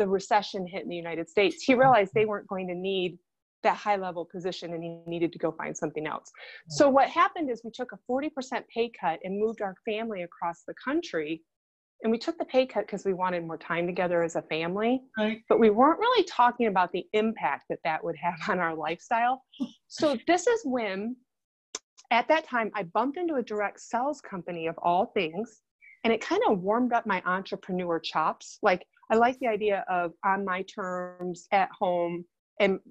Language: English